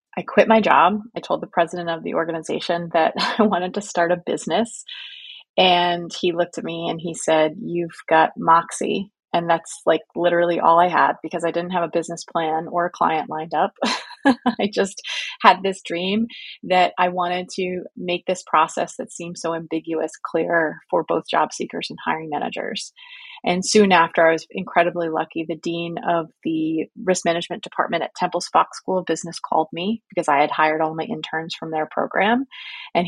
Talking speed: 190 wpm